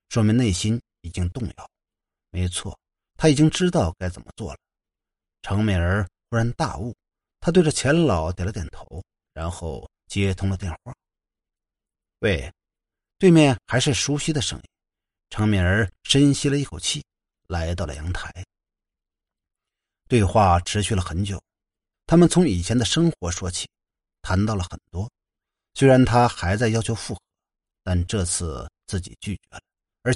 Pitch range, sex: 90-125 Hz, male